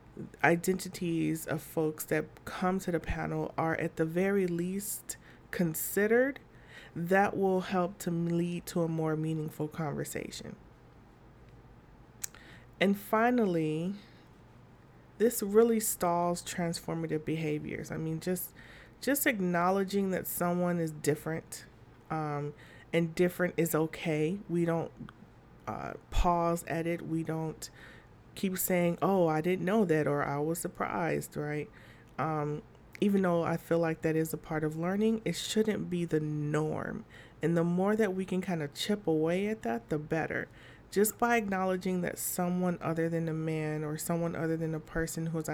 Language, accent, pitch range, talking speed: English, American, 155-185 Hz, 150 wpm